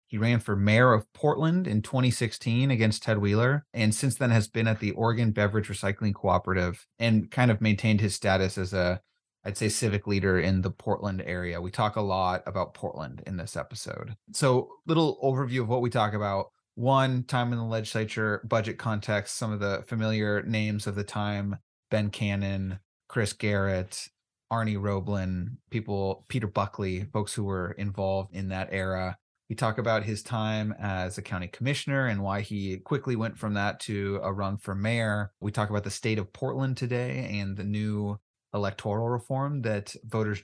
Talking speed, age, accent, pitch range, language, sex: 180 wpm, 30-49, American, 100-120 Hz, English, male